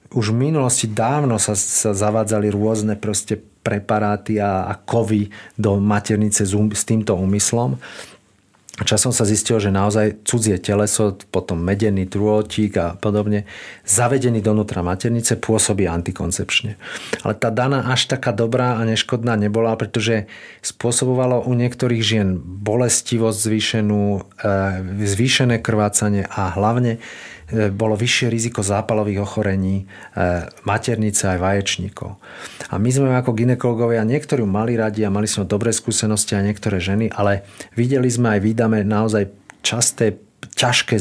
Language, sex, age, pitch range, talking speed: Slovak, male, 40-59, 100-120 Hz, 125 wpm